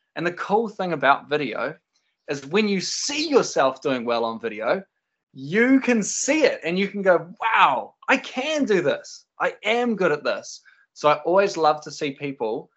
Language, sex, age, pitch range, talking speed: English, male, 20-39, 135-170 Hz, 190 wpm